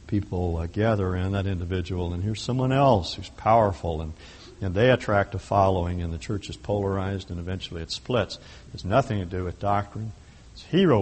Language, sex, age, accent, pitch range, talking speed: English, male, 60-79, American, 90-115 Hz, 190 wpm